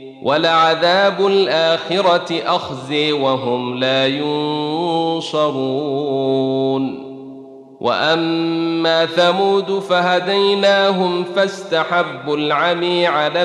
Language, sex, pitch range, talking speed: Arabic, male, 140-180 Hz, 55 wpm